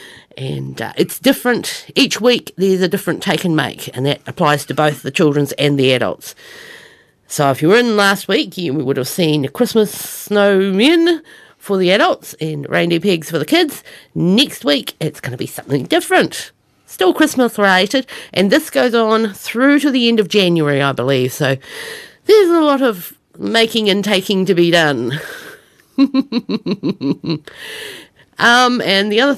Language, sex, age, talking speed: English, female, 50-69, 165 wpm